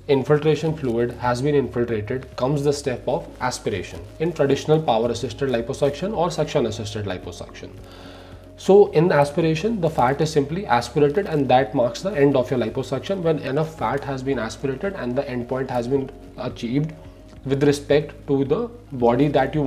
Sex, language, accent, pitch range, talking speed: male, English, Indian, 115-150 Hz, 165 wpm